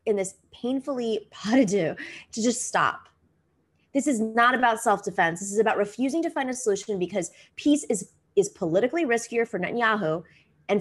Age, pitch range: 20-39, 185-265 Hz